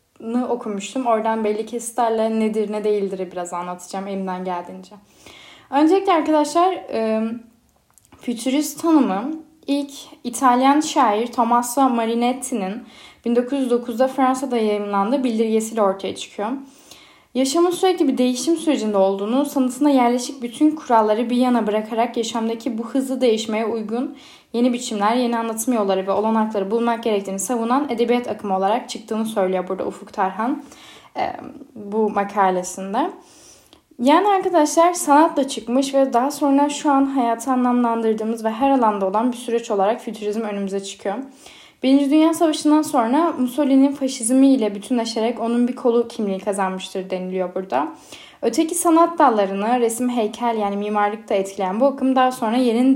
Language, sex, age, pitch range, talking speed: Turkish, female, 10-29, 215-275 Hz, 125 wpm